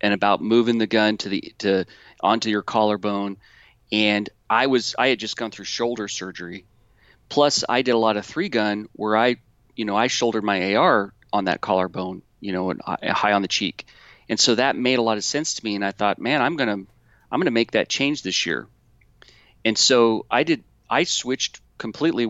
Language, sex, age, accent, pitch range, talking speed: English, male, 40-59, American, 105-125 Hz, 205 wpm